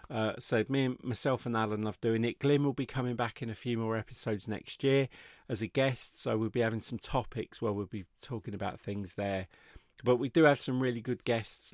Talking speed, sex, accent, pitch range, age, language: 230 wpm, male, British, 105-130 Hz, 40-59, English